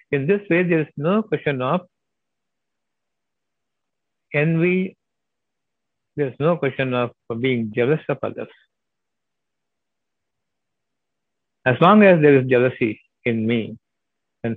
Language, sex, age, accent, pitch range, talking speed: Tamil, male, 60-79, native, 120-150 Hz, 110 wpm